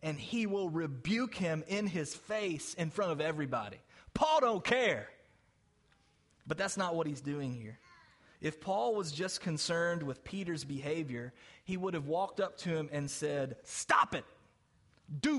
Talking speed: 165 wpm